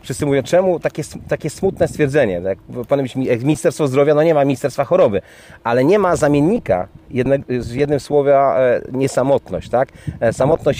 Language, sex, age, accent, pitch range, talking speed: Polish, male, 30-49, native, 130-170 Hz, 150 wpm